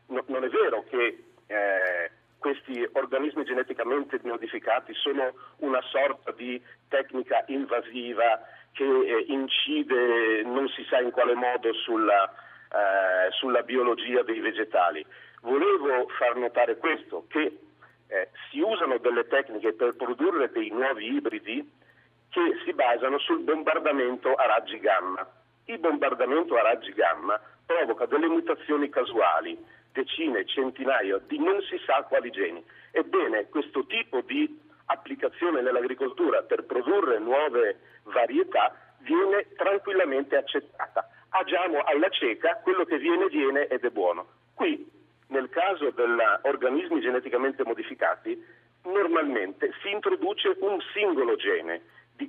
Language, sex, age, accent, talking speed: Italian, male, 50-69, native, 120 wpm